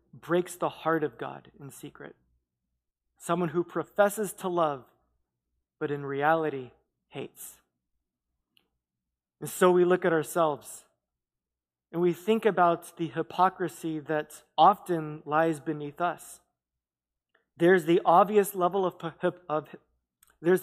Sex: male